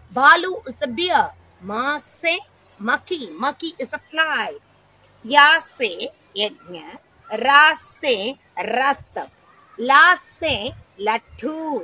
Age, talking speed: 30-49, 90 wpm